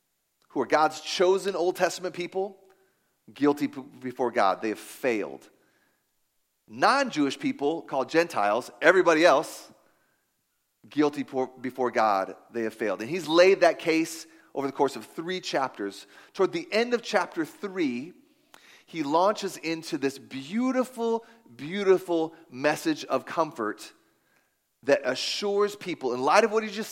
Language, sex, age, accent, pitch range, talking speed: English, male, 30-49, American, 140-205 Hz, 135 wpm